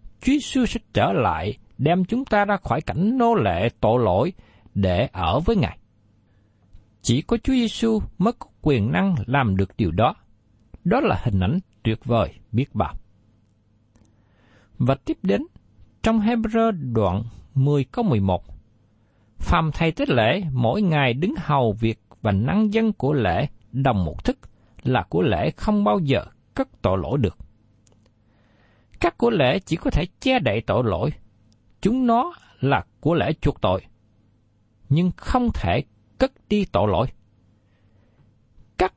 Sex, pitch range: male, 105-175 Hz